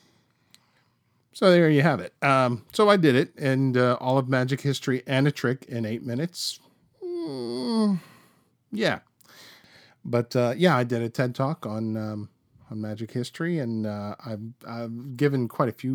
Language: English